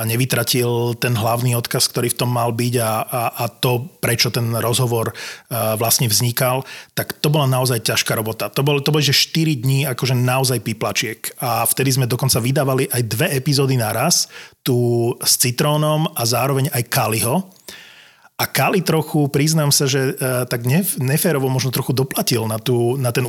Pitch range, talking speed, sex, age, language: 120-145 Hz, 165 wpm, male, 30-49, Slovak